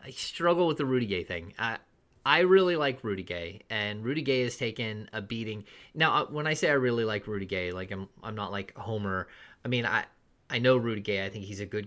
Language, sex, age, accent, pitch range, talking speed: English, male, 30-49, American, 100-120 Hz, 240 wpm